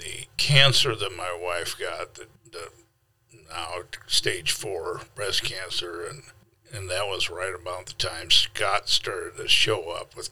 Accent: American